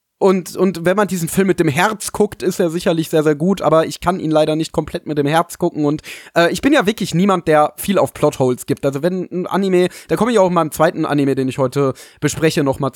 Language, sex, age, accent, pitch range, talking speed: German, male, 30-49, German, 145-180 Hz, 260 wpm